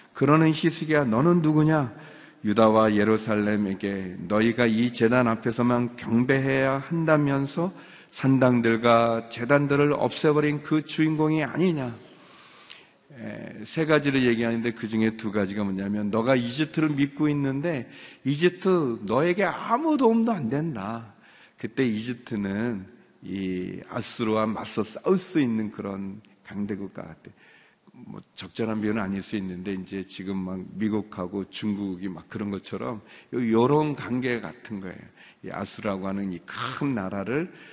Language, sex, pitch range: Korean, male, 105-150 Hz